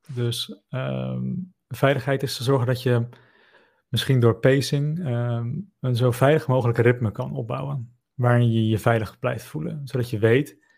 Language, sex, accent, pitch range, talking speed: Dutch, male, Dutch, 120-140 Hz, 155 wpm